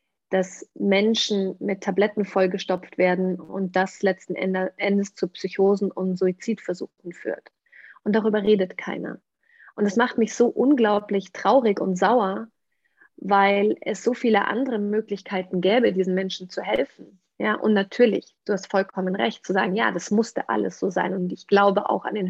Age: 30-49